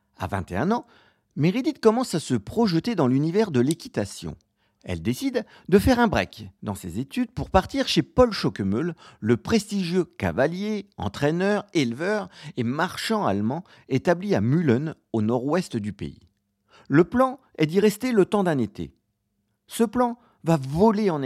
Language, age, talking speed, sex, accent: French, 50-69, 155 wpm, male, French